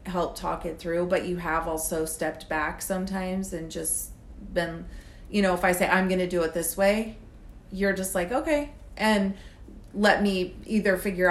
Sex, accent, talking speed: female, American, 185 wpm